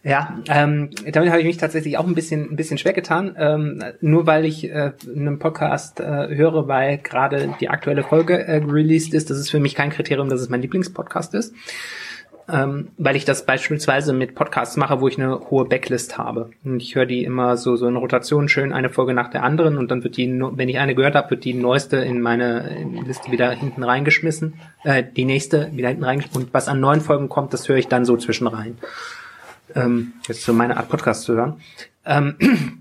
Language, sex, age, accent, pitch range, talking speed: German, male, 20-39, German, 130-160 Hz, 205 wpm